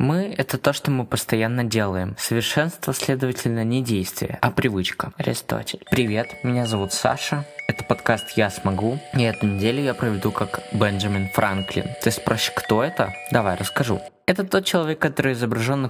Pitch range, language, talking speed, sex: 110-150 Hz, Russian, 160 wpm, male